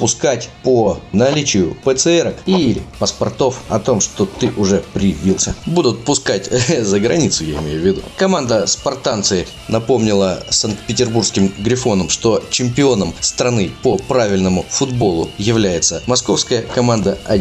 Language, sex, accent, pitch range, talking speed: Russian, male, native, 95-115 Hz, 120 wpm